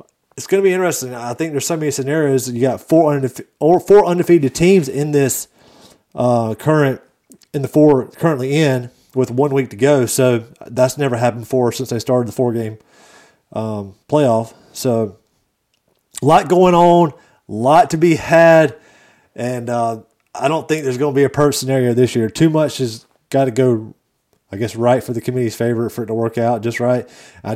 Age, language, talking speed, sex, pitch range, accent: 30-49, English, 195 wpm, male, 120-145 Hz, American